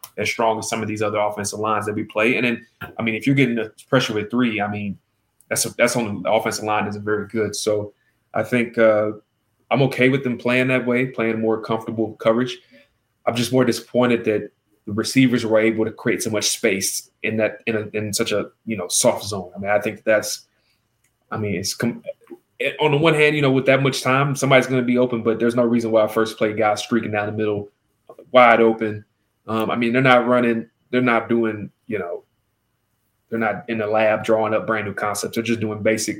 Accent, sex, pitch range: American, male, 105-120 Hz